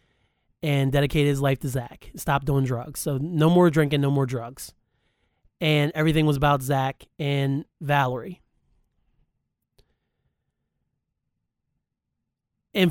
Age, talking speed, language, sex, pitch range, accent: 30-49, 110 wpm, English, male, 140-170 Hz, American